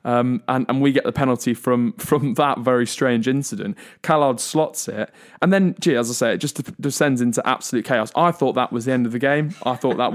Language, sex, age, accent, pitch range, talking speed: English, male, 20-39, British, 120-140 Hz, 235 wpm